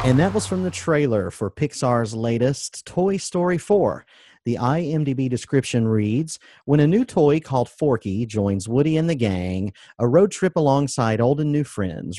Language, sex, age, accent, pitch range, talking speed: English, male, 40-59, American, 110-150 Hz, 170 wpm